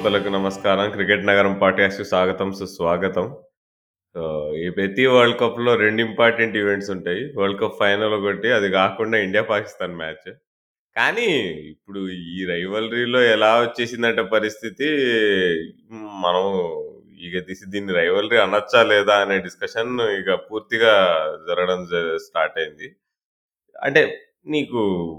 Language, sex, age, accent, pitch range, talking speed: Telugu, male, 20-39, native, 100-120 Hz, 105 wpm